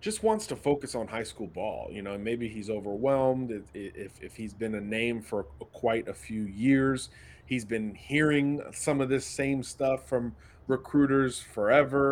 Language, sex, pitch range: English, male, 105-135 Hz